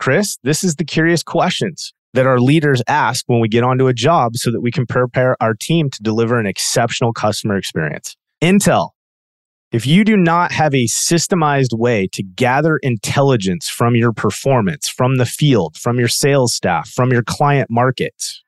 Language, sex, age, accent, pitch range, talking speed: English, male, 30-49, American, 115-145 Hz, 180 wpm